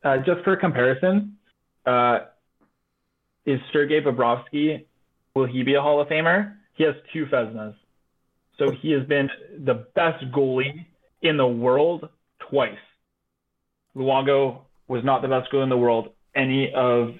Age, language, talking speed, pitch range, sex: 20-39, English, 145 wpm, 125-165 Hz, male